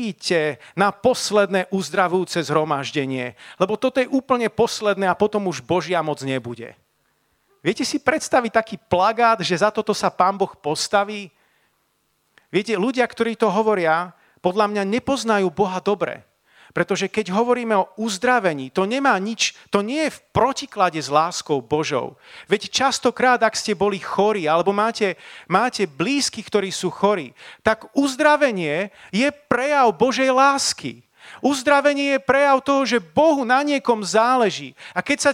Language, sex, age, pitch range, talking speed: Slovak, male, 40-59, 170-235 Hz, 145 wpm